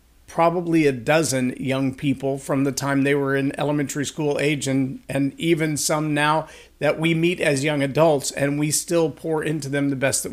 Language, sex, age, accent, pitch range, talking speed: English, male, 50-69, American, 140-160 Hz, 200 wpm